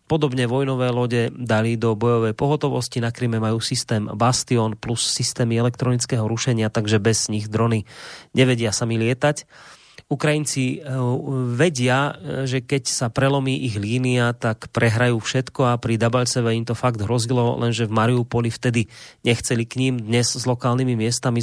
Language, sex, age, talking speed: Slovak, male, 30-49, 145 wpm